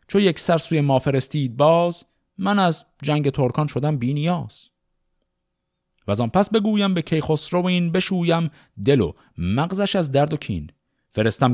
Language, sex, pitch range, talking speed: Persian, male, 105-160 Hz, 160 wpm